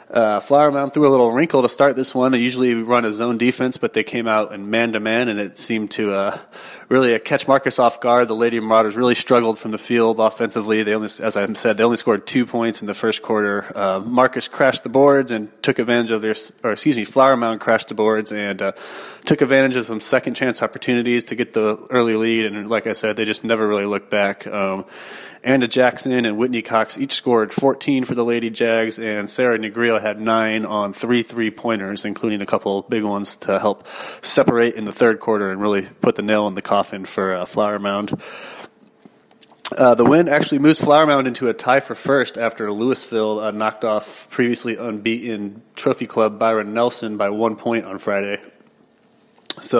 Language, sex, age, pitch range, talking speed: English, male, 30-49, 105-125 Hz, 210 wpm